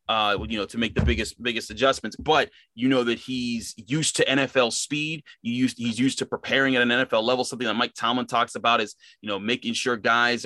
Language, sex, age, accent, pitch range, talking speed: English, male, 30-49, American, 110-130 Hz, 230 wpm